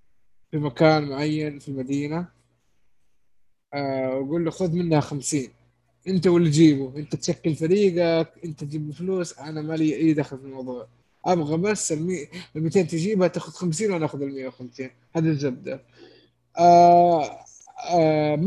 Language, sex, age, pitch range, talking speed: Arabic, male, 20-39, 140-175 Hz, 135 wpm